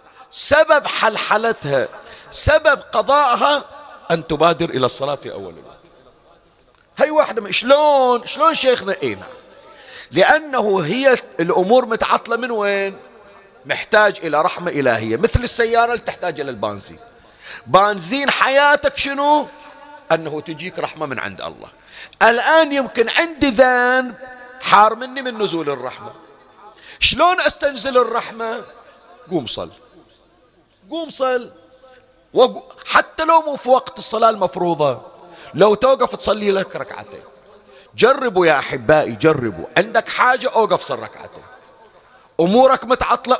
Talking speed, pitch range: 110 wpm, 195-275 Hz